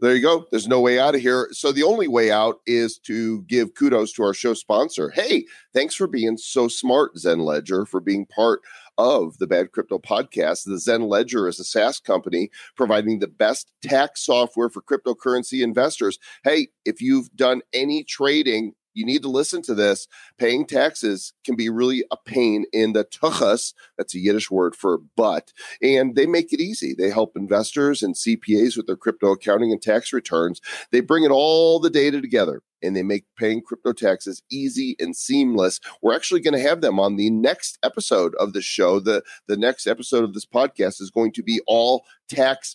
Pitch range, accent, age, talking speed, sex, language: 105-165 Hz, American, 30-49, 195 wpm, male, English